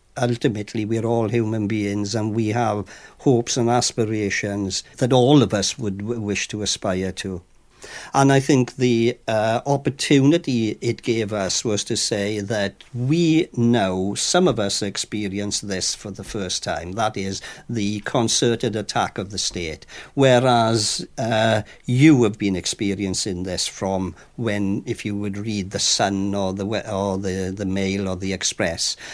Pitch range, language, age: 100-120 Hz, English, 50-69